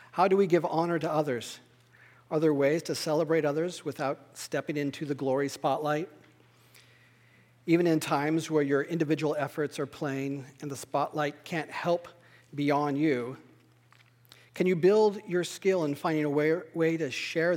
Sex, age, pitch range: male, 40-59, 130-175 Hz